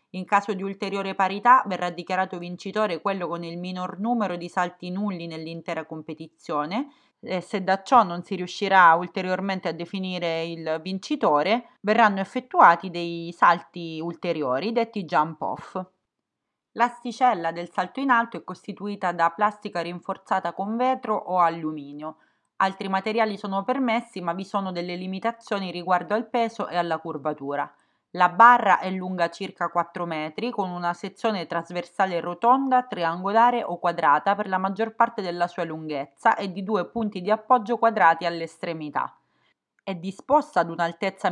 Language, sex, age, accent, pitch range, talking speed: Italian, female, 30-49, native, 170-205 Hz, 145 wpm